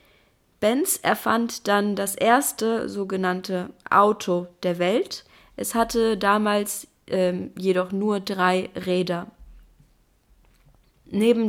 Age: 20-39